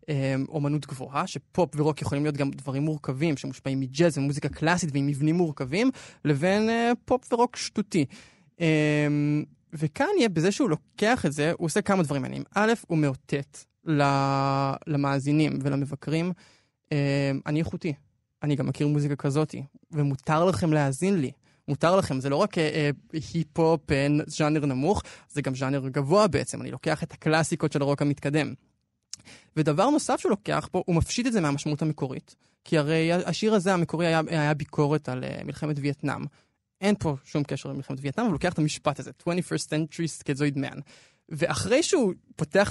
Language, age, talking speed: Hebrew, 20-39, 155 wpm